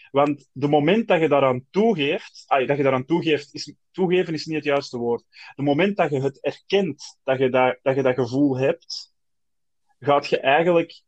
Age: 20-39